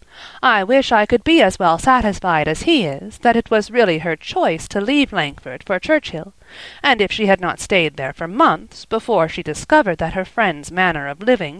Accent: American